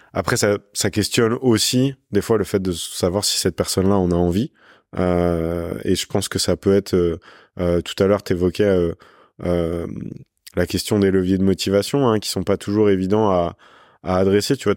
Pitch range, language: 85-100 Hz, French